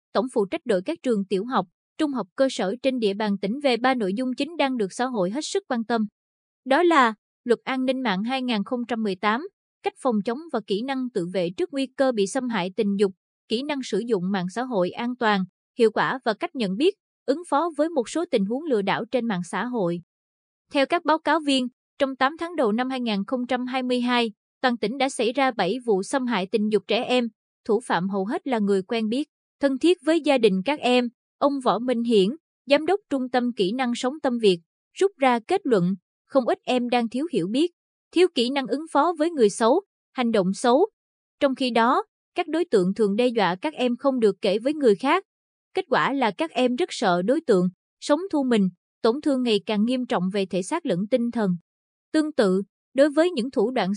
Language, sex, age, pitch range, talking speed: Vietnamese, female, 20-39, 210-280 Hz, 225 wpm